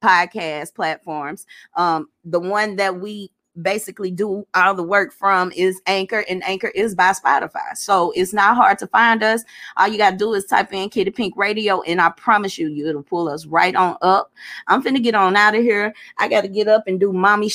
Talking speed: 215 wpm